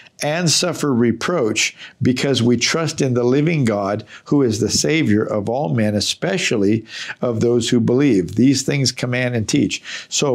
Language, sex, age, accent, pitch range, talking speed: English, male, 50-69, American, 115-145 Hz, 160 wpm